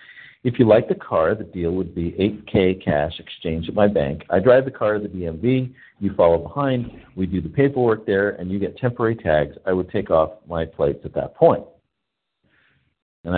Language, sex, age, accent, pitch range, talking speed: English, male, 50-69, American, 80-115 Hz, 200 wpm